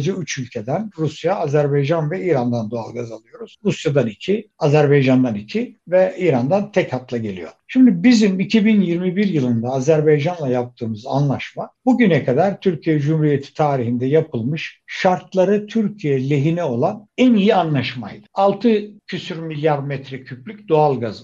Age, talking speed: 60-79, 120 wpm